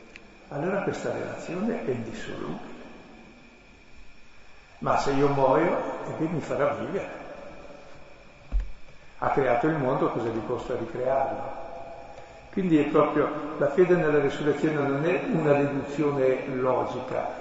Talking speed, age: 115 wpm, 60-79